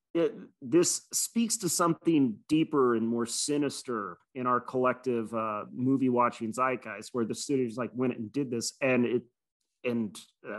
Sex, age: male, 30-49